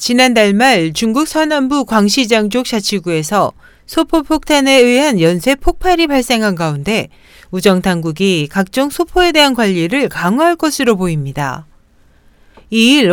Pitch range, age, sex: 185-285 Hz, 40-59, female